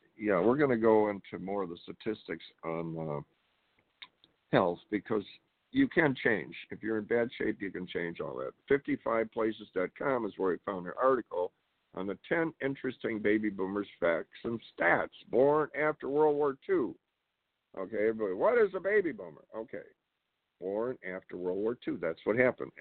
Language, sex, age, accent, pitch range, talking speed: English, male, 60-79, American, 95-125 Hz, 170 wpm